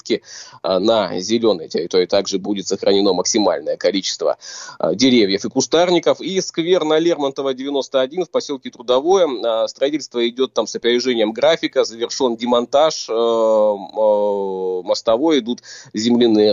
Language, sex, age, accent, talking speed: Russian, male, 20-39, native, 110 wpm